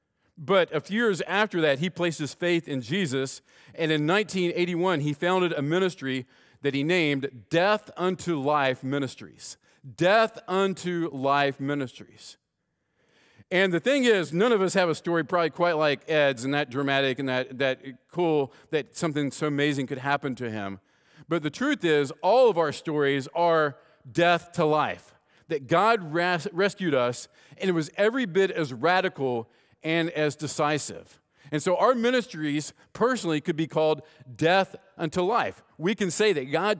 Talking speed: 165 wpm